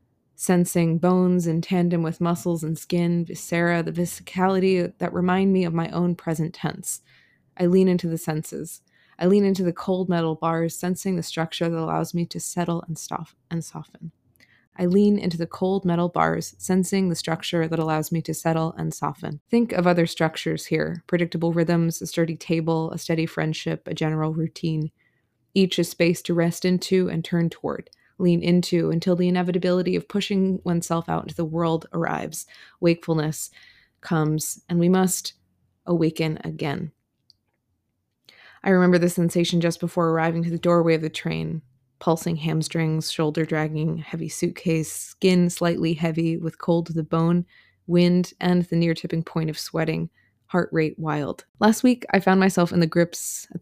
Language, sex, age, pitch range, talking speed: English, female, 20-39, 160-175 Hz, 165 wpm